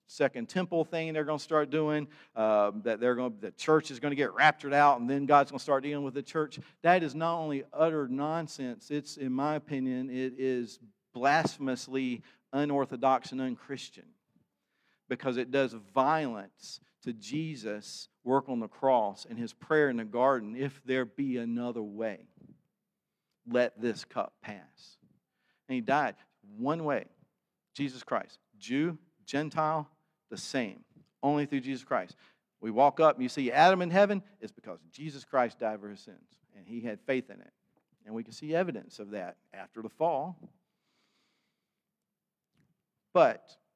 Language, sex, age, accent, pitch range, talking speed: English, male, 50-69, American, 125-160 Hz, 165 wpm